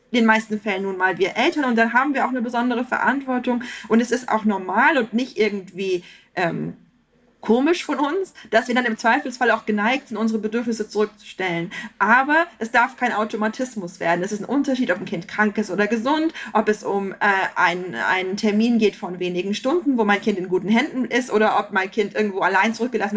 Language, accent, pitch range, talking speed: German, German, 205-255 Hz, 205 wpm